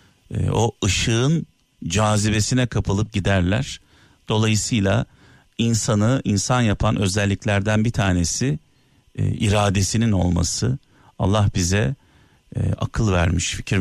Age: 50-69